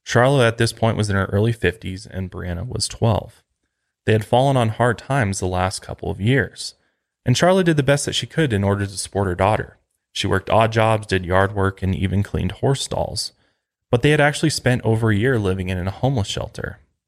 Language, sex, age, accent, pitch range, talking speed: English, male, 20-39, American, 95-125 Hz, 220 wpm